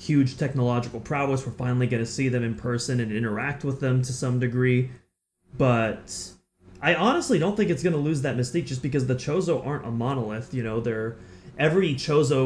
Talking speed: 190 wpm